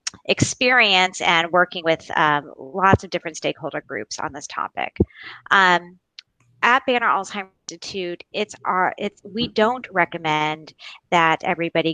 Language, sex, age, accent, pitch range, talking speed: English, female, 30-49, American, 155-190 Hz, 130 wpm